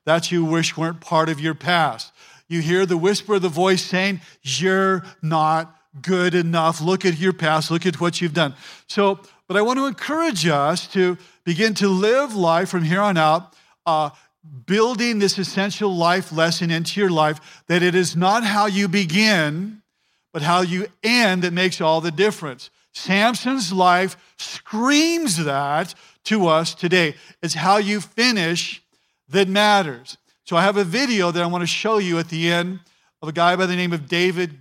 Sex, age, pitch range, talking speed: male, 50-69, 165-195 Hz, 180 wpm